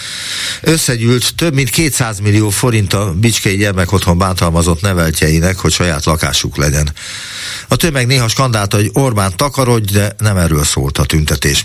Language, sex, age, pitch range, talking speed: Hungarian, male, 50-69, 85-115 Hz, 145 wpm